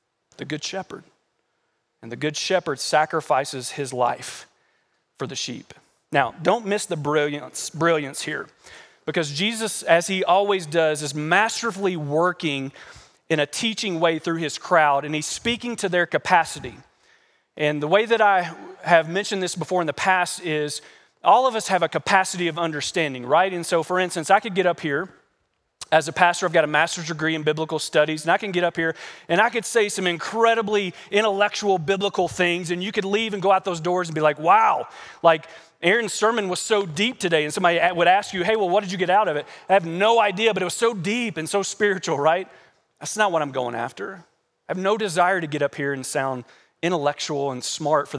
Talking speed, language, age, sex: 205 wpm, English, 40-59, male